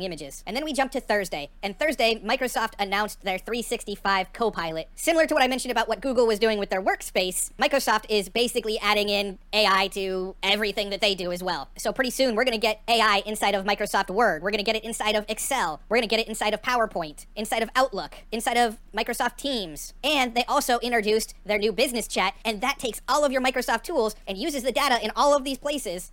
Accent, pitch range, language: American, 205-245 Hz, English